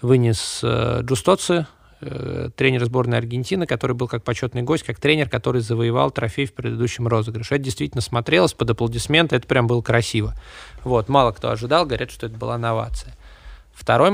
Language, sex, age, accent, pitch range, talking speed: Russian, male, 20-39, native, 115-130 Hz, 165 wpm